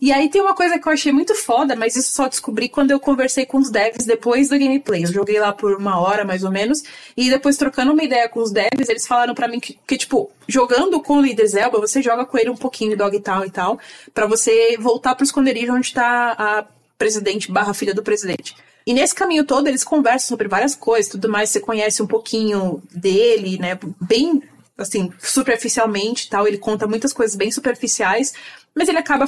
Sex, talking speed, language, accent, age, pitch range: female, 220 wpm, Portuguese, Brazilian, 20-39, 215-275 Hz